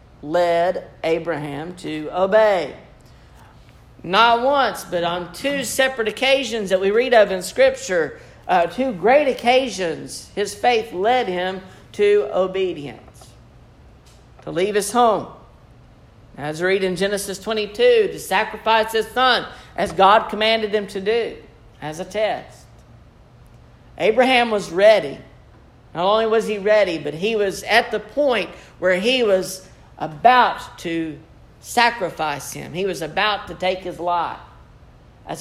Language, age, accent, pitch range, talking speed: English, 50-69, American, 160-215 Hz, 135 wpm